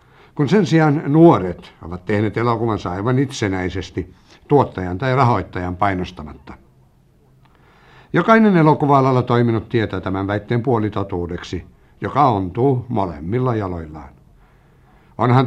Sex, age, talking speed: male, 60-79, 95 wpm